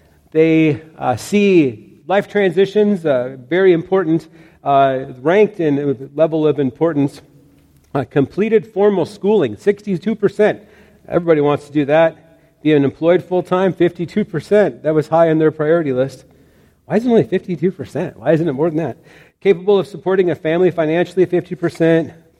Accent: American